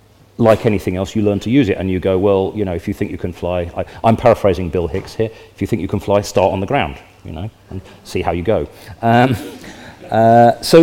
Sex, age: male, 40-59